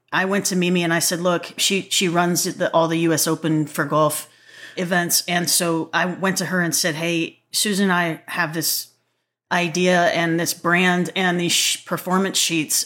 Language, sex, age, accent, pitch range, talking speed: English, female, 30-49, American, 170-185 Hz, 195 wpm